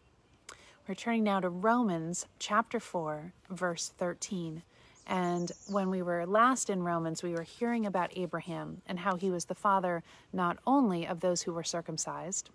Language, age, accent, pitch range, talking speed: English, 30-49, American, 170-220 Hz, 160 wpm